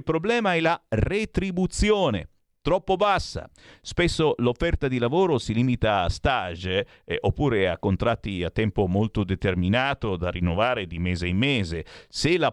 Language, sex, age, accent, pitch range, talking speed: Italian, male, 50-69, native, 100-150 Hz, 150 wpm